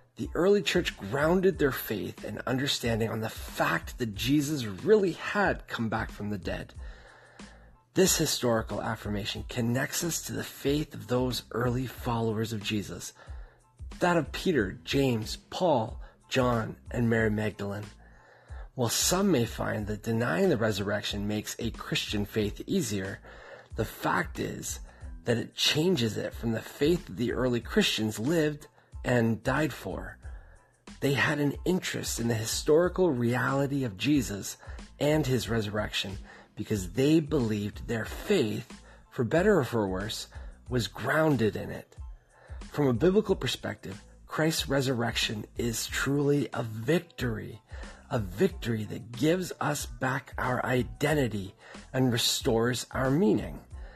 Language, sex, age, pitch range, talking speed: English, male, 30-49, 105-145 Hz, 135 wpm